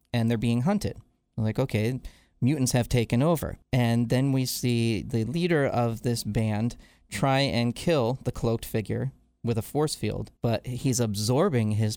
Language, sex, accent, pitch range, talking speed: English, male, American, 110-140 Hz, 170 wpm